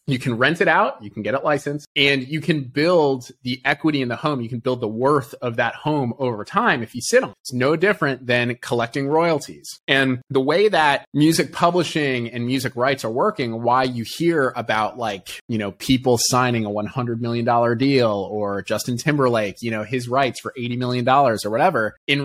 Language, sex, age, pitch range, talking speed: English, male, 30-49, 115-145 Hz, 210 wpm